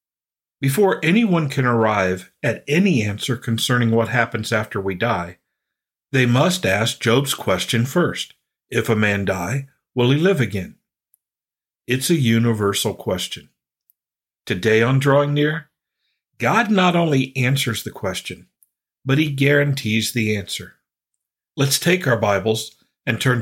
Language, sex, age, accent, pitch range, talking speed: English, male, 50-69, American, 110-135 Hz, 135 wpm